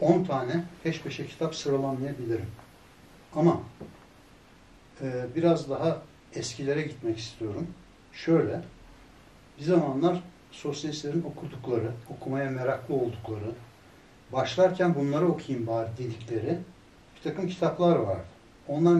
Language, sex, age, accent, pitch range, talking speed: Turkish, male, 60-79, native, 120-150 Hz, 100 wpm